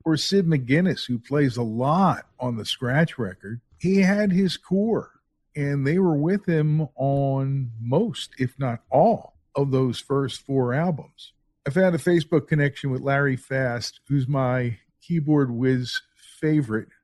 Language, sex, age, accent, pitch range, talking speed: English, male, 50-69, American, 125-160 Hz, 150 wpm